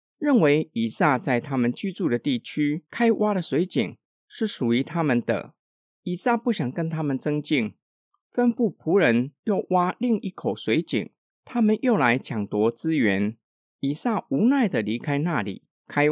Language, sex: Chinese, male